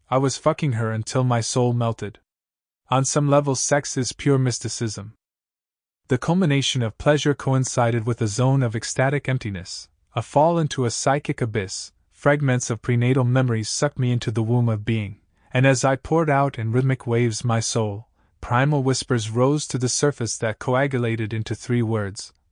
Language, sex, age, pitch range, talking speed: Italian, male, 20-39, 110-135 Hz, 170 wpm